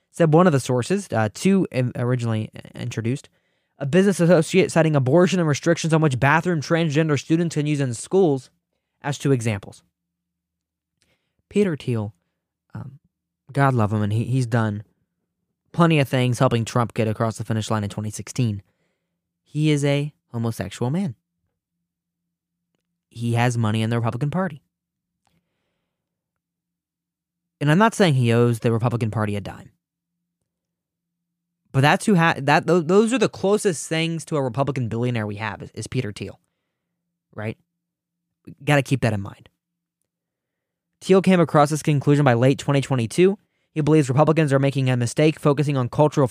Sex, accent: male, American